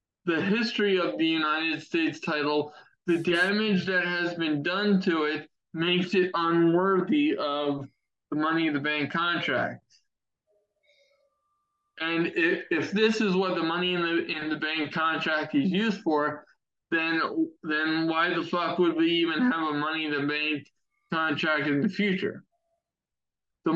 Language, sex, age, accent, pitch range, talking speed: English, male, 20-39, American, 150-205 Hz, 150 wpm